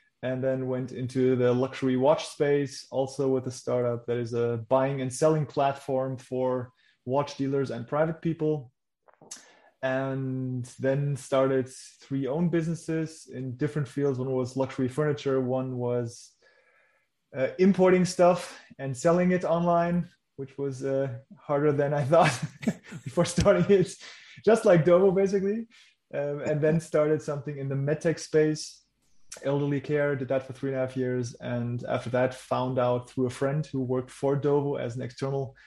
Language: English